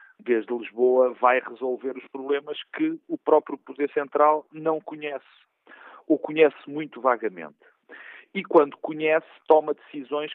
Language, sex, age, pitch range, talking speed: Portuguese, male, 50-69, 130-160 Hz, 130 wpm